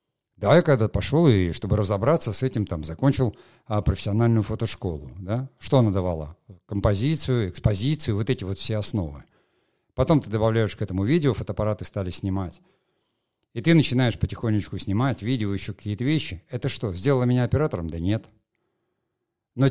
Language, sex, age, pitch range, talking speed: Russian, male, 50-69, 100-125 Hz, 155 wpm